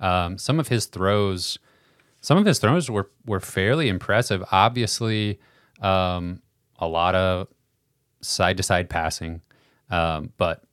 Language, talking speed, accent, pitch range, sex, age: English, 135 wpm, American, 90-105 Hz, male, 30-49